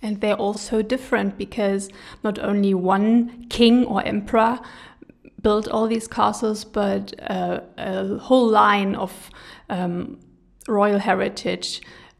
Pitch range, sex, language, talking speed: 195-225 Hz, female, German, 125 wpm